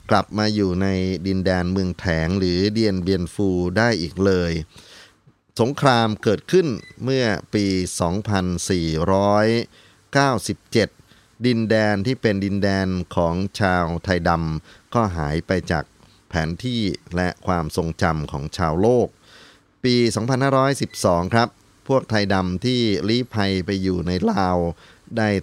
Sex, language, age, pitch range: male, Thai, 30-49, 90-110 Hz